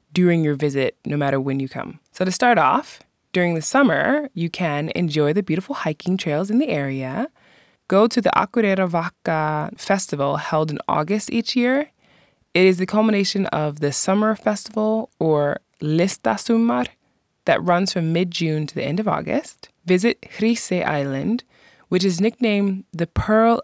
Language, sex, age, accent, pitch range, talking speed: English, female, 20-39, American, 155-200 Hz, 160 wpm